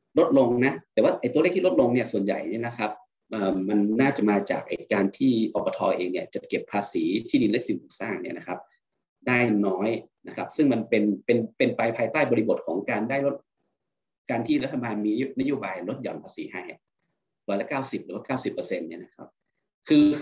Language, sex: Thai, male